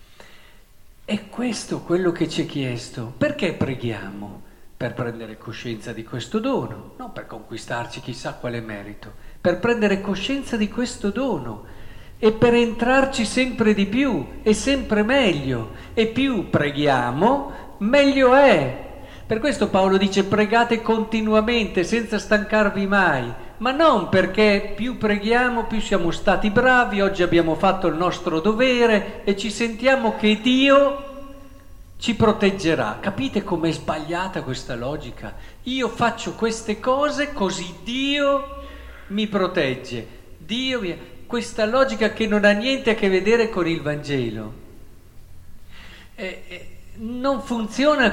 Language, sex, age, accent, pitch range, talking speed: Italian, male, 50-69, native, 145-235 Hz, 130 wpm